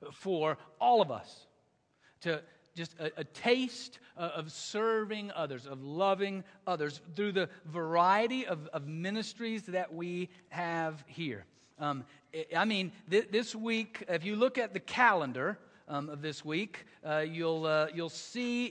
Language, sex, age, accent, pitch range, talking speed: English, male, 50-69, American, 170-225 Hz, 150 wpm